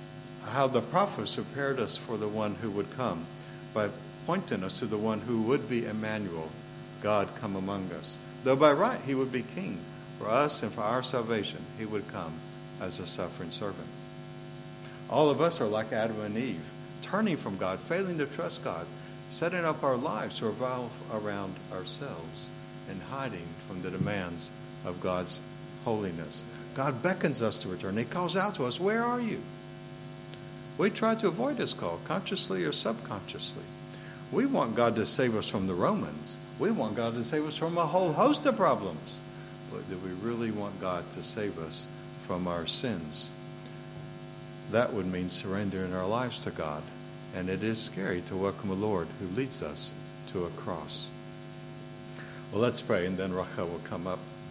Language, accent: English, American